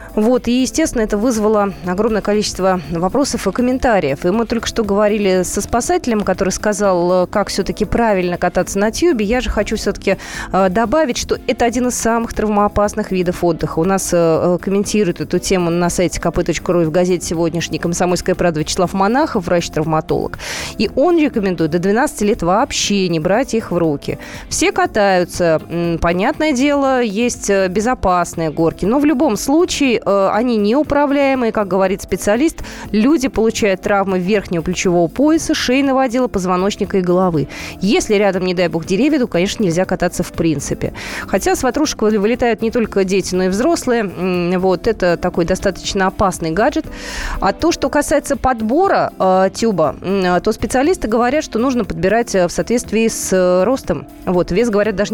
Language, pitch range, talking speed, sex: Russian, 180-235 Hz, 160 wpm, female